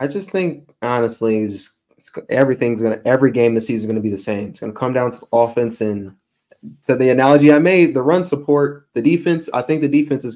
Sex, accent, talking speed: male, American, 265 wpm